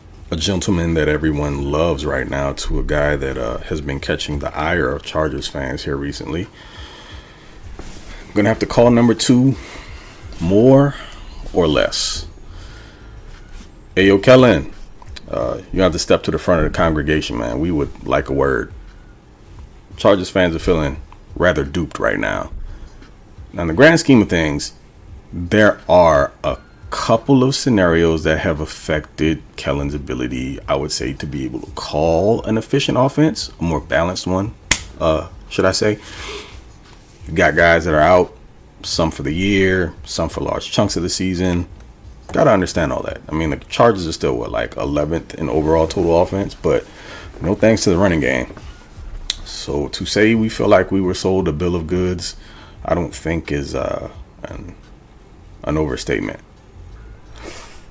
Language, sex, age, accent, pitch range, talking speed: English, male, 30-49, American, 75-105 Hz, 165 wpm